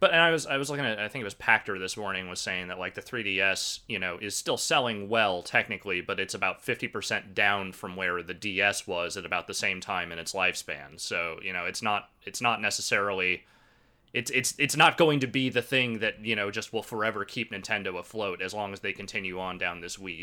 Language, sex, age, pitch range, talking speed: English, male, 30-49, 95-120 Hz, 245 wpm